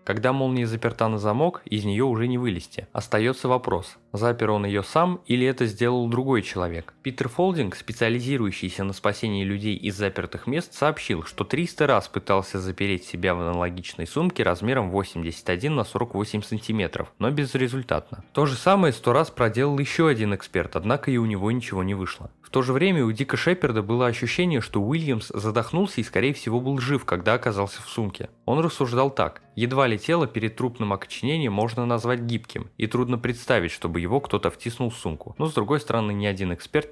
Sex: male